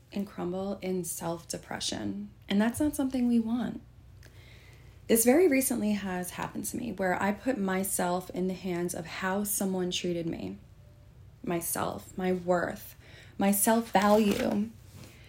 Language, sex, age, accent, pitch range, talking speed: English, female, 20-39, American, 165-205 Hz, 135 wpm